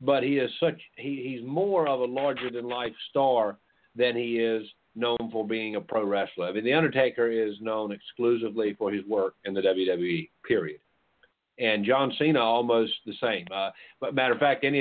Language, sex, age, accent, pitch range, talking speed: English, male, 50-69, American, 105-120 Hz, 195 wpm